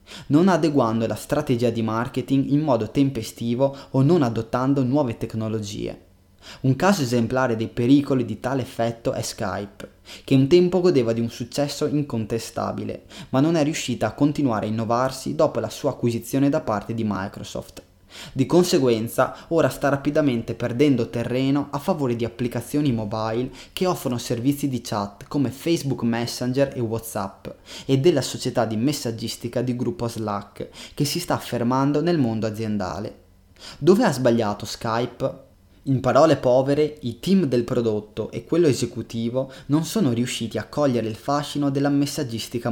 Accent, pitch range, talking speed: native, 115-140 Hz, 150 wpm